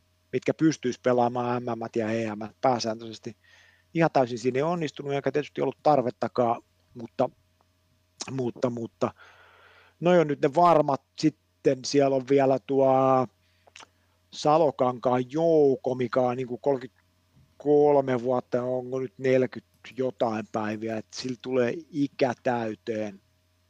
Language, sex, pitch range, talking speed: Finnish, male, 110-135 Hz, 110 wpm